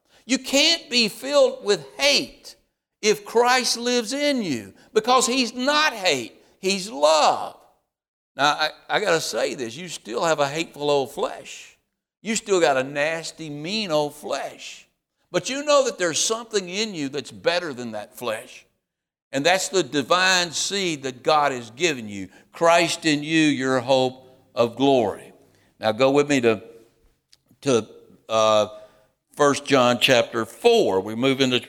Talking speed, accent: 155 wpm, American